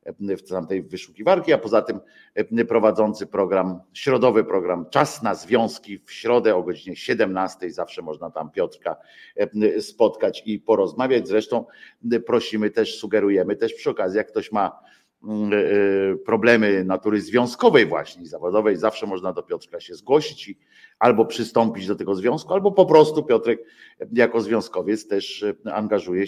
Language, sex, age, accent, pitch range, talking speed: Polish, male, 50-69, native, 115-190 Hz, 135 wpm